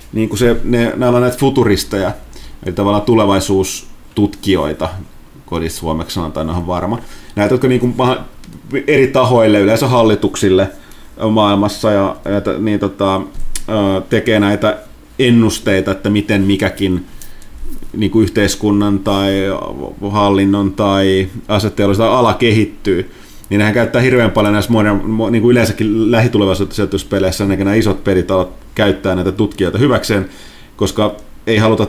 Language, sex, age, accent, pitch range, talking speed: Finnish, male, 30-49, native, 95-110 Hz, 120 wpm